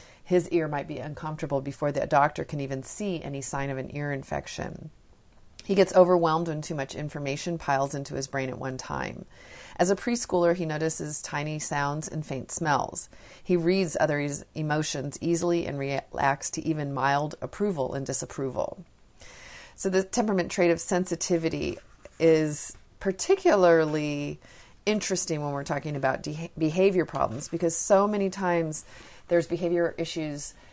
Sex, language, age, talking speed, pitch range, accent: female, English, 40-59, 150 wpm, 145-175 Hz, American